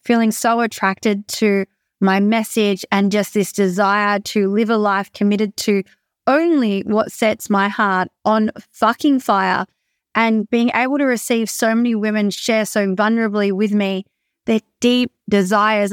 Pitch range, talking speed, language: 205-245 Hz, 150 wpm, English